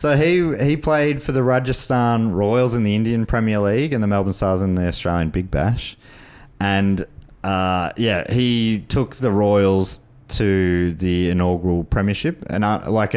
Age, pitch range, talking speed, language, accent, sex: 30-49, 95-120 Hz, 165 wpm, English, Australian, male